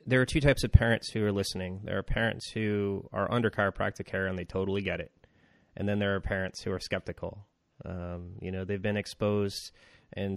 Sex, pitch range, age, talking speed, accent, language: male, 95-105 Hz, 30-49, 215 wpm, American, English